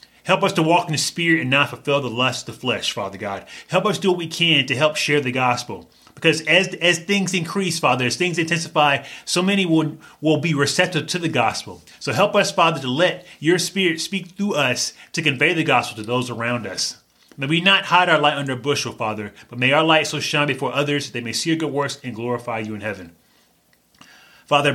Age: 30-49